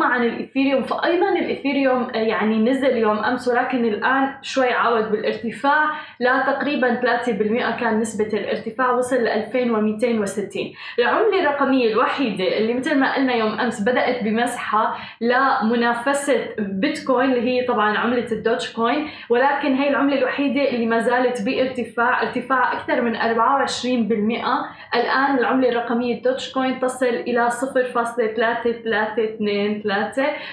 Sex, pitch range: female, 220-260 Hz